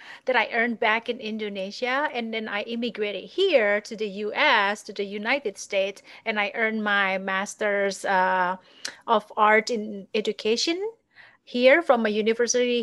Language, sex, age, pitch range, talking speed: English, female, 30-49, 210-275 Hz, 150 wpm